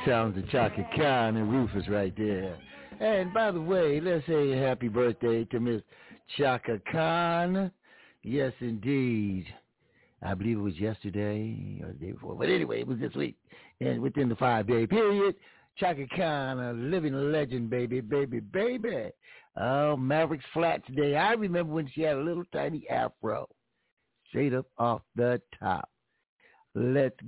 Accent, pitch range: American, 110-155 Hz